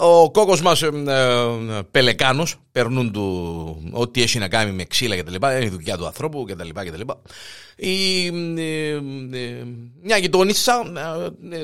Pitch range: 115-170 Hz